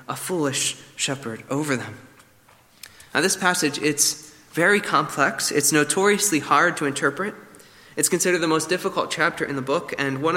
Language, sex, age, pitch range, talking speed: English, male, 20-39, 140-185 Hz, 155 wpm